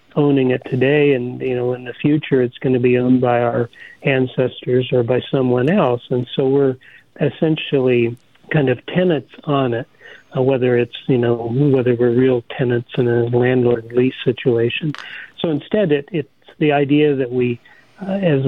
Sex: male